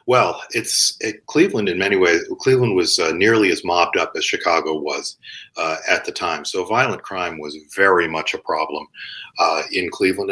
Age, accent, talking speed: 50-69, American, 185 wpm